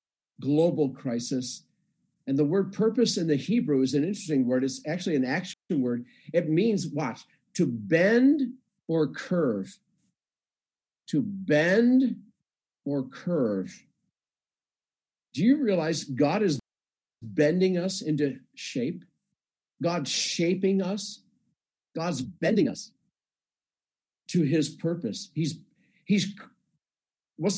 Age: 50-69